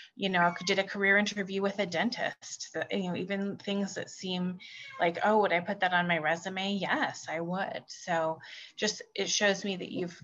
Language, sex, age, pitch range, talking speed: English, female, 30-49, 170-200 Hz, 200 wpm